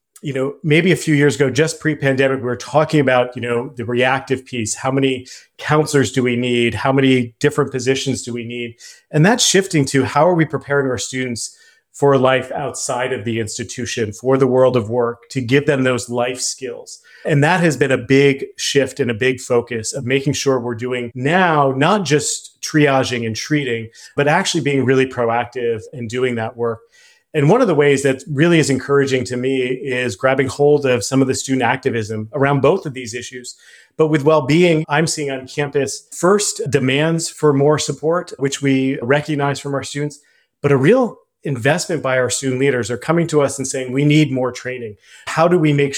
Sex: male